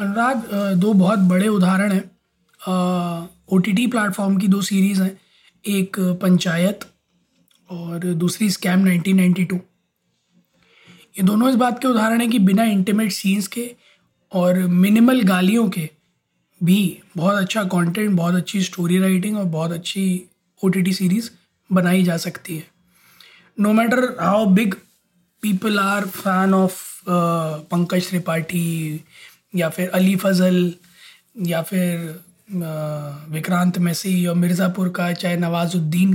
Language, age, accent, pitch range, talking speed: Hindi, 20-39, native, 175-200 Hz, 125 wpm